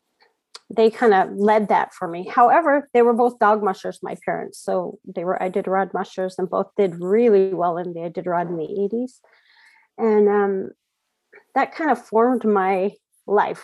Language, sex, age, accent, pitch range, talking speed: English, female, 40-59, American, 195-230 Hz, 185 wpm